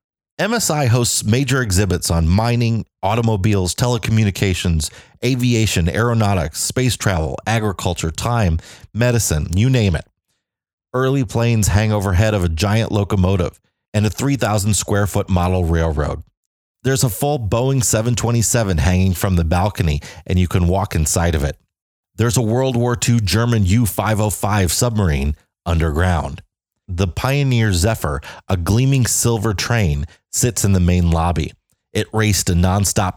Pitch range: 85-115 Hz